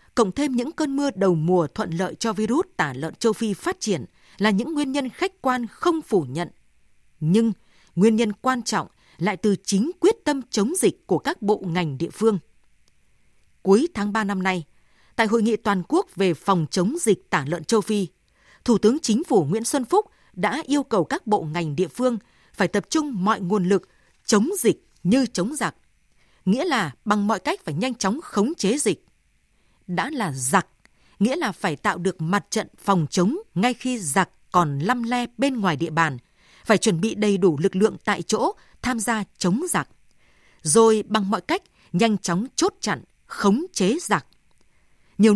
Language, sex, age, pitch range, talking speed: Vietnamese, female, 20-39, 185-250 Hz, 195 wpm